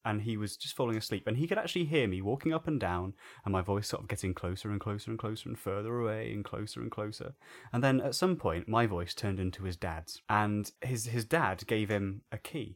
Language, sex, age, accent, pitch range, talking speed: English, male, 20-39, British, 105-120 Hz, 250 wpm